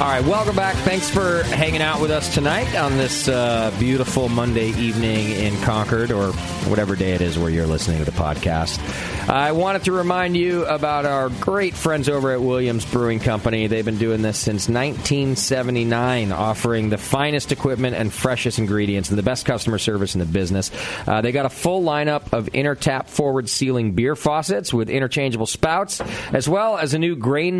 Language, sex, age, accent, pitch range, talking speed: English, male, 40-59, American, 100-140 Hz, 190 wpm